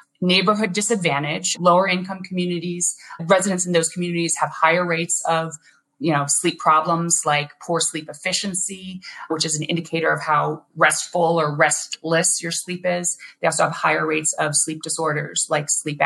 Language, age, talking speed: English, 30-49, 160 wpm